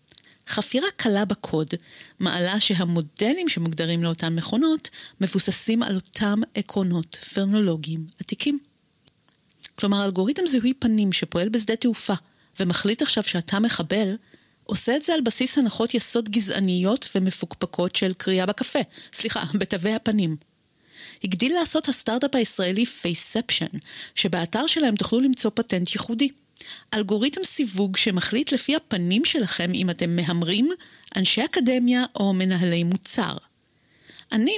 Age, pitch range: 30-49, 175-230 Hz